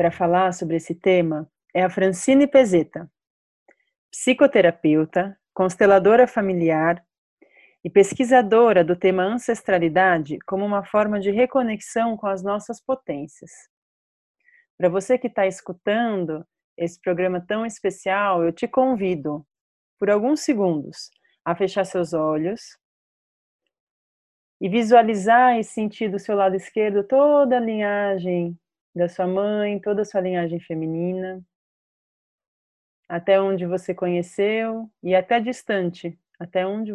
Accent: Brazilian